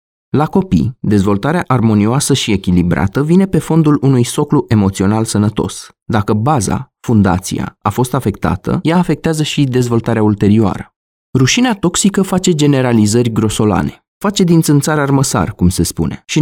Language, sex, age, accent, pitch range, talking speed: Romanian, male, 20-39, native, 100-150 Hz, 135 wpm